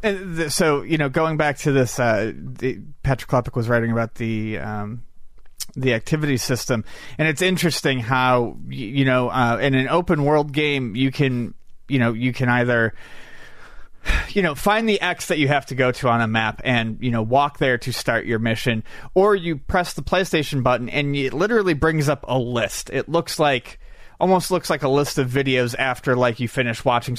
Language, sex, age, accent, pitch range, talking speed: English, male, 30-49, American, 120-150 Hz, 195 wpm